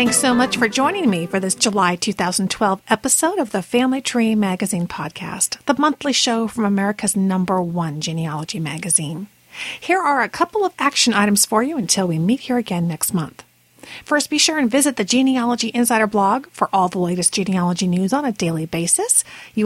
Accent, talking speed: American, 190 wpm